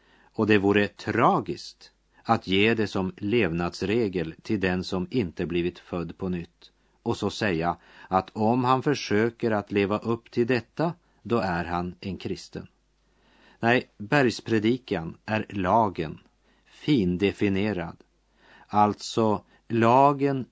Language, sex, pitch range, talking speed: Swedish, male, 90-120 Hz, 125 wpm